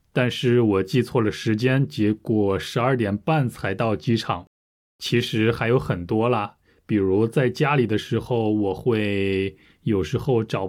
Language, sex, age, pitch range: Chinese, male, 20-39, 105-145 Hz